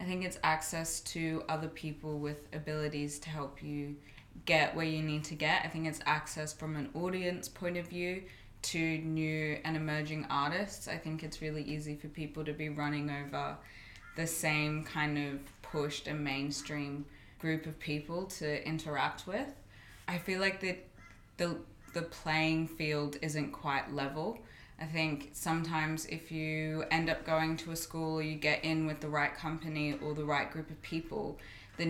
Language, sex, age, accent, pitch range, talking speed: English, female, 20-39, Australian, 150-160 Hz, 175 wpm